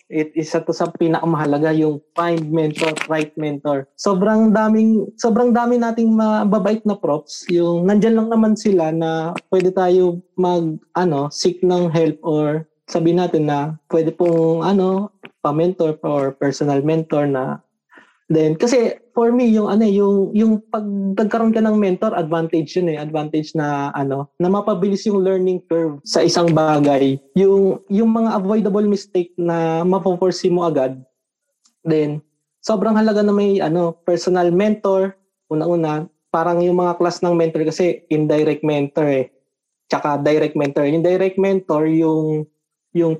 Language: Filipino